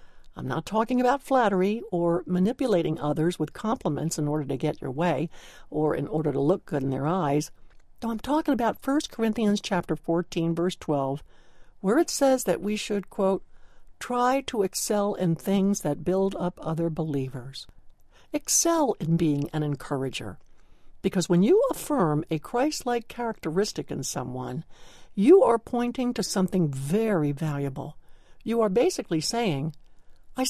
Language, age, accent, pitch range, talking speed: English, 60-79, American, 160-230 Hz, 155 wpm